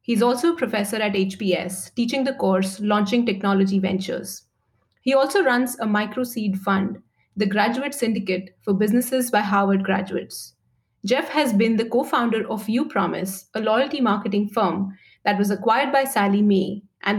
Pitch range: 195-235 Hz